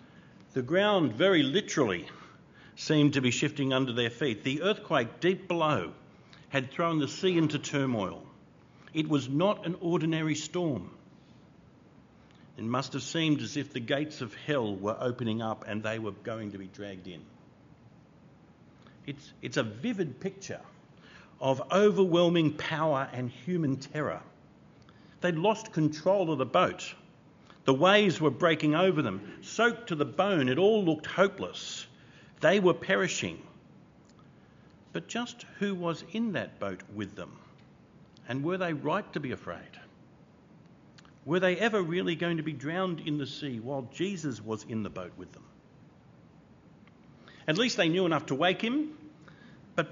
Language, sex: English, male